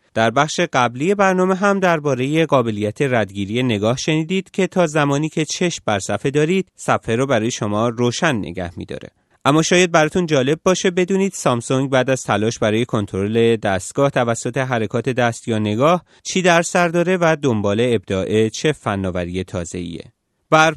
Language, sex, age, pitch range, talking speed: Persian, male, 30-49, 105-155 Hz, 155 wpm